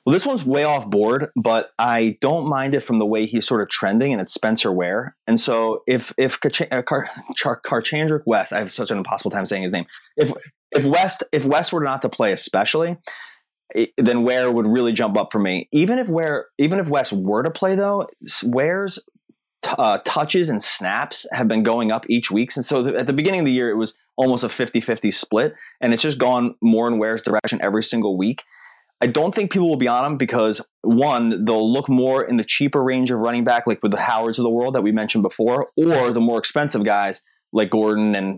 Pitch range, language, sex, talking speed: 110-145 Hz, English, male, 215 wpm